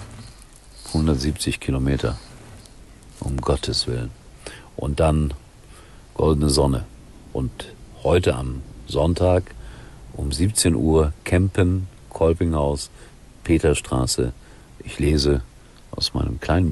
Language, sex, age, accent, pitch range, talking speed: German, male, 50-69, German, 70-95 Hz, 85 wpm